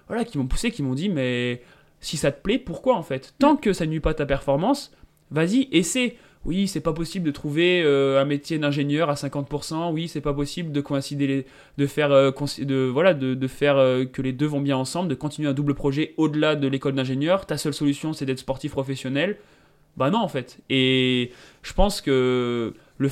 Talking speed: 215 wpm